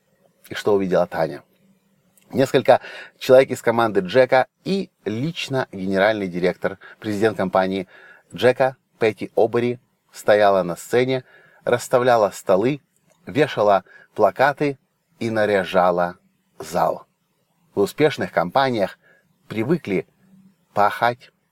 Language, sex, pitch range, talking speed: Russian, male, 105-165 Hz, 90 wpm